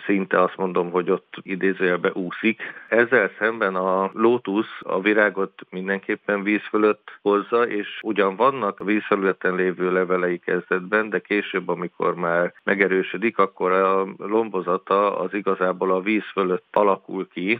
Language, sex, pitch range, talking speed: Hungarian, male, 90-100 Hz, 135 wpm